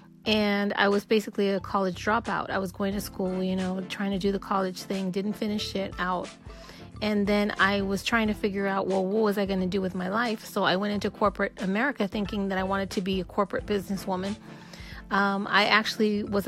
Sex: female